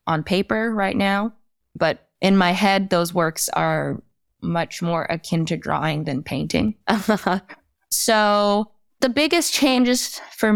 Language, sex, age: English, female, 20-39